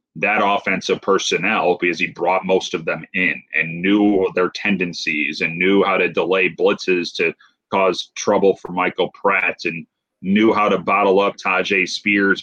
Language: English